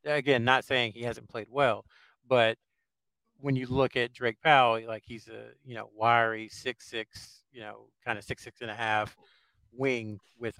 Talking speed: 185 wpm